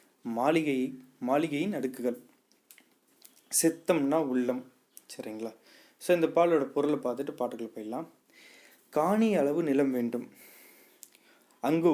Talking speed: 90 wpm